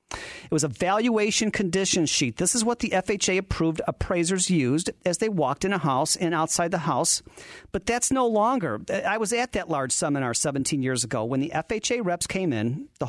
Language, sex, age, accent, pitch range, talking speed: English, male, 40-59, American, 150-210 Hz, 200 wpm